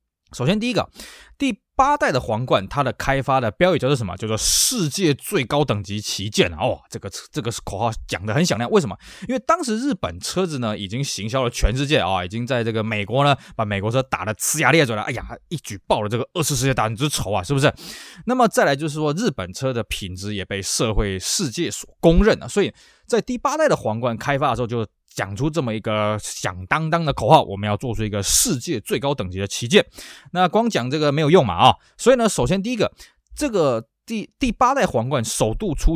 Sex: male